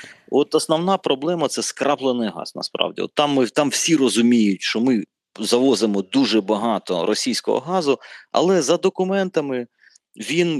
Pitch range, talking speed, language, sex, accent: 110-150 Hz, 135 wpm, Ukrainian, male, native